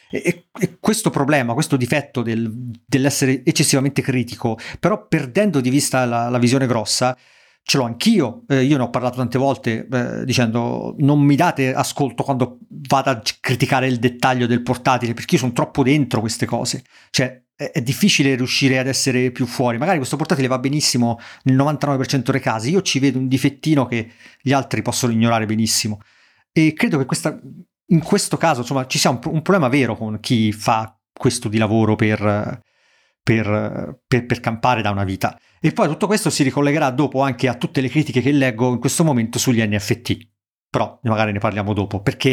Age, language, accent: 40-59, Italian, native